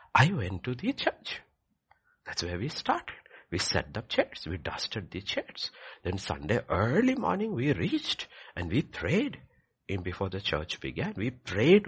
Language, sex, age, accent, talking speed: English, male, 60-79, Indian, 165 wpm